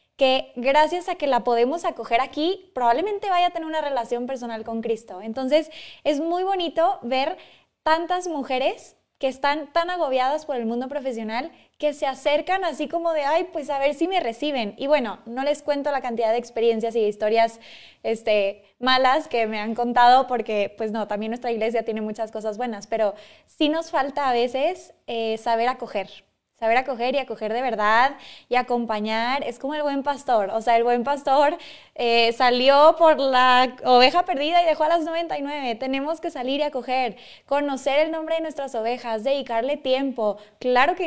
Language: Spanish